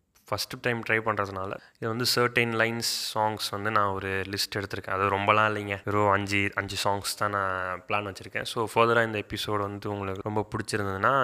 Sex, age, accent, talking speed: male, 20-39, native, 170 wpm